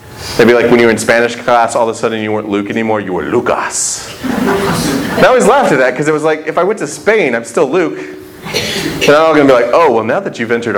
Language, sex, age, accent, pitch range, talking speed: English, male, 30-49, American, 120-185 Hz, 285 wpm